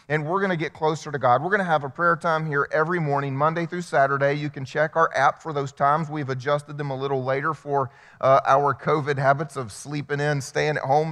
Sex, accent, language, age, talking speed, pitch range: male, American, English, 30-49, 250 wpm, 135-165 Hz